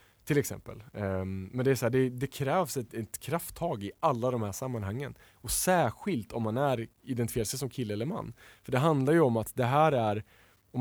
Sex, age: male, 20-39